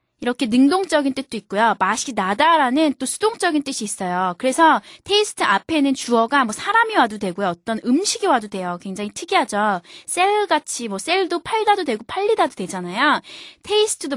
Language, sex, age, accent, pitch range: Korean, female, 20-39, native, 205-310 Hz